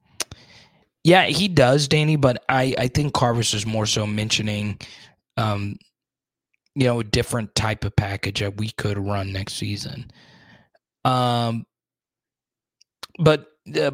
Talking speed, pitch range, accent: 130 wpm, 110-150 Hz, American